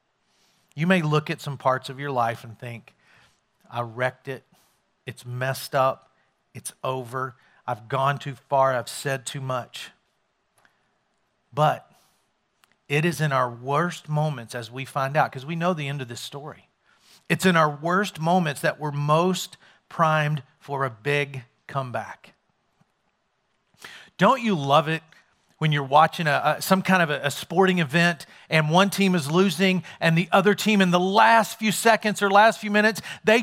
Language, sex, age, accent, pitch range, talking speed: English, male, 40-59, American, 140-210 Hz, 170 wpm